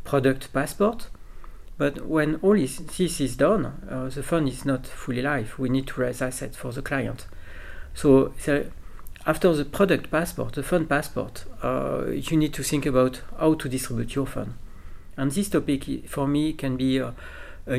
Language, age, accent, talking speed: English, 50-69, French, 170 wpm